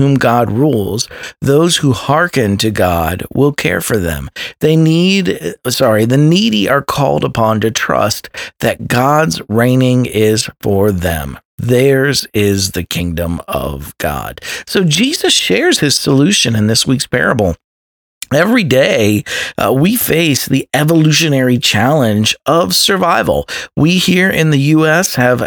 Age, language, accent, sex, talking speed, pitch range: 50-69, English, American, male, 140 wpm, 110-155 Hz